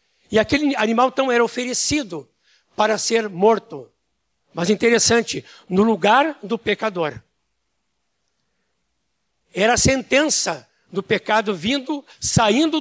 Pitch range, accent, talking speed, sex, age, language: 190-255 Hz, Brazilian, 105 wpm, male, 60-79, Portuguese